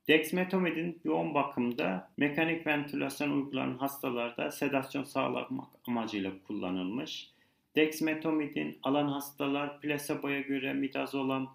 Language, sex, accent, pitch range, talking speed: Turkish, male, native, 130-145 Hz, 90 wpm